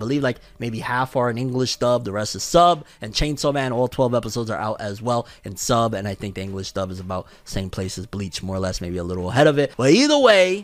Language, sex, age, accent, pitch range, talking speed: English, male, 20-39, American, 110-150 Hz, 270 wpm